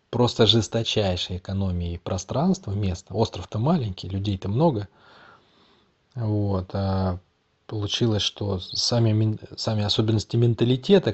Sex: male